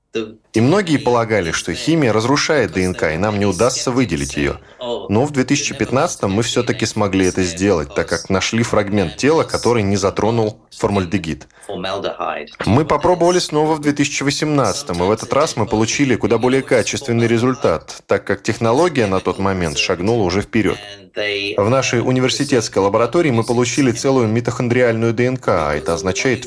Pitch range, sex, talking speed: 100-130 Hz, male, 150 wpm